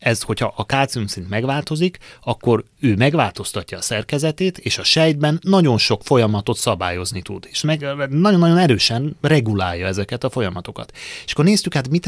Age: 30-49